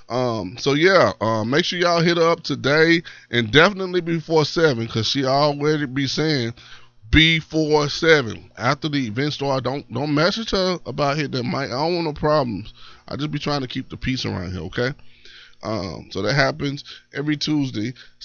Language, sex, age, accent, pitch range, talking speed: English, male, 20-39, American, 115-155 Hz, 185 wpm